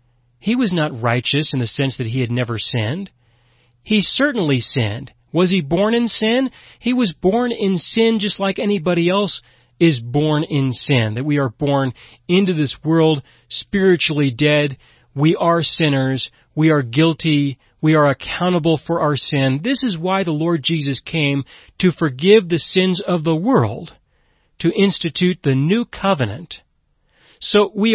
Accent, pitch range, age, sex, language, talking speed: American, 130-185 Hz, 40-59, male, English, 160 wpm